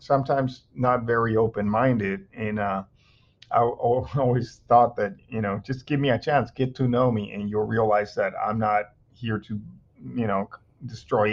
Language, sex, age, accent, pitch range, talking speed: English, male, 40-59, American, 105-120 Hz, 170 wpm